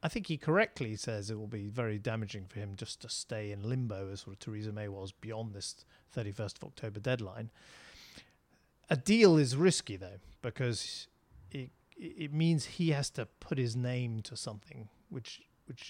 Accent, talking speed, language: British, 180 wpm, English